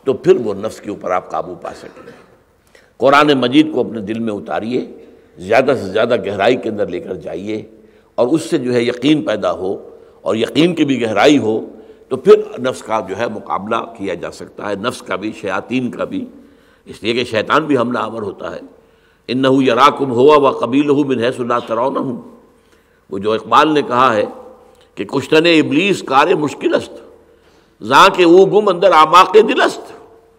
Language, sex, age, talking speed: Urdu, male, 60-79, 185 wpm